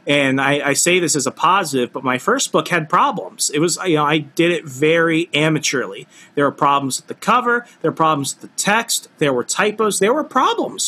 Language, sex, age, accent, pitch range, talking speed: English, male, 30-49, American, 125-165 Hz, 225 wpm